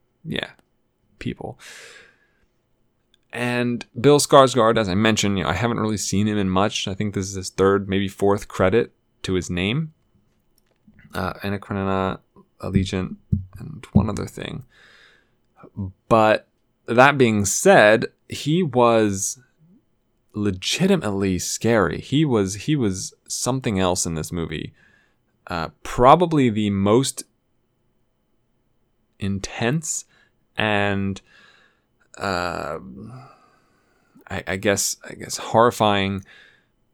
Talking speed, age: 110 wpm, 20-39